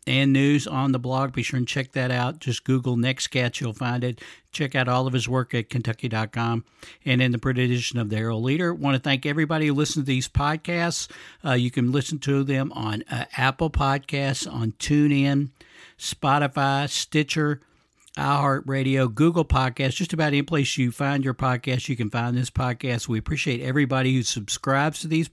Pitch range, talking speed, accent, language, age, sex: 125-145 Hz, 195 wpm, American, English, 60-79, male